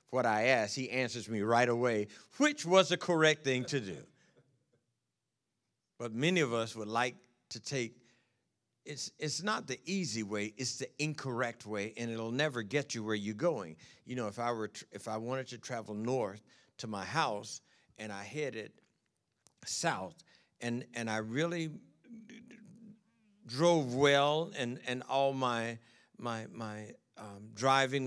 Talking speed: 155 wpm